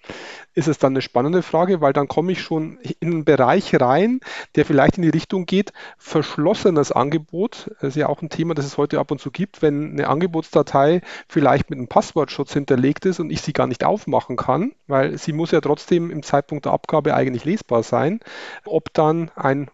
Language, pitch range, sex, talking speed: German, 140-170 Hz, male, 205 wpm